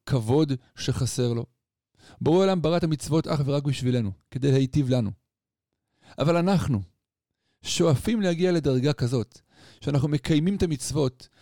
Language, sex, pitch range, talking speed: Hebrew, male, 115-155 Hz, 125 wpm